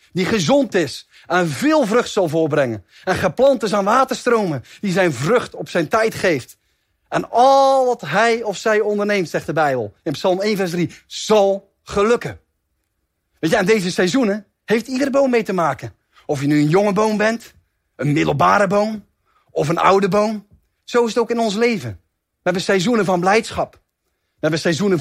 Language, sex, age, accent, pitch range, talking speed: Dutch, male, 30-49, Dutch, 170-225 Hz, 180 wpm